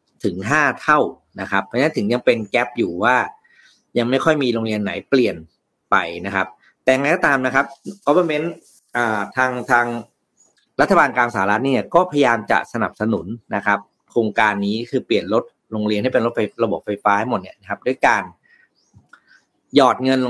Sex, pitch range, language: male, 105-135 Hz, Thai